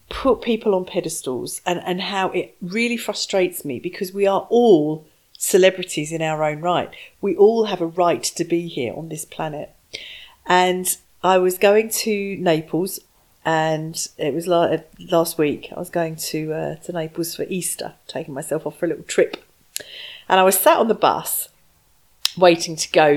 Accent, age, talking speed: British, 40-59, 175 wpm